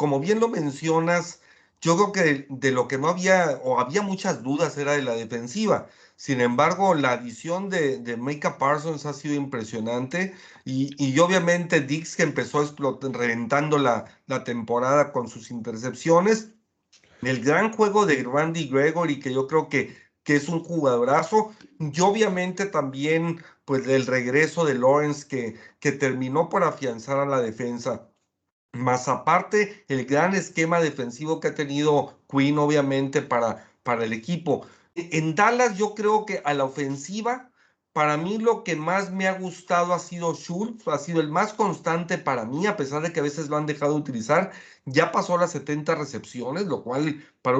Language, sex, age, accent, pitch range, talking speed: Spanish, male, 40-59, Mexican, 135-175 Hz, 170 wpm